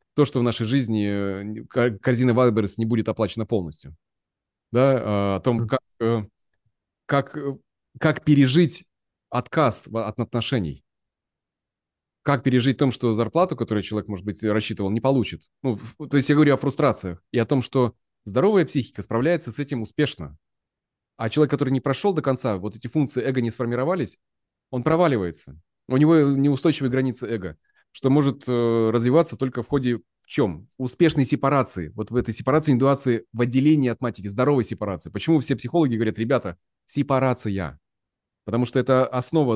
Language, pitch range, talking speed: Russian, 110-140 Hz, 155 wpm